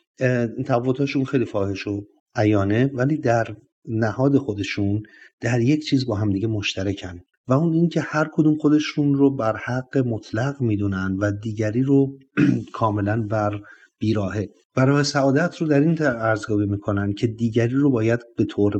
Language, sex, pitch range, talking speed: Persian, male, 105-135 Hz, 150 wpm